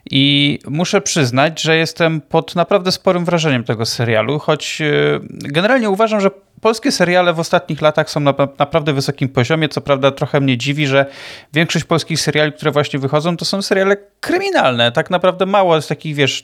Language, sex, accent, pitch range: Polish, male, native, 135-165 Hz